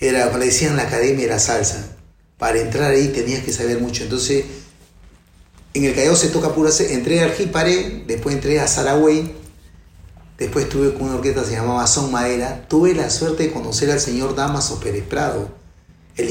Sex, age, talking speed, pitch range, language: male, 30-49, 190 wpm, 110-145 Hz, Spanish